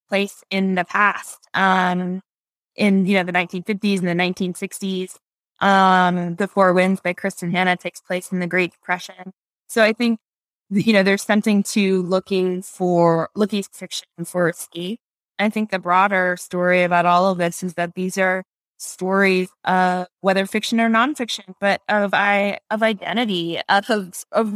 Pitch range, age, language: 180-205 Hz, 20-39, English